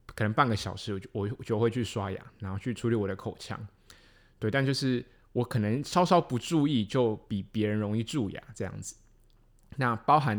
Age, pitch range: 20-39, 110-135 Hz